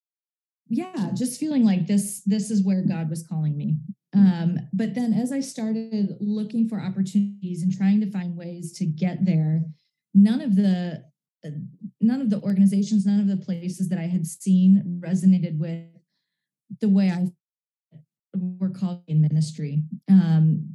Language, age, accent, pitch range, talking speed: English, 20-39, American, 170-205 Hz, 160 wpm